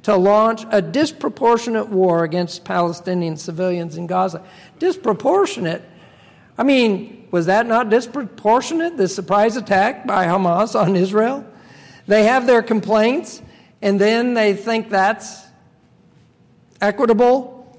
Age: 50-69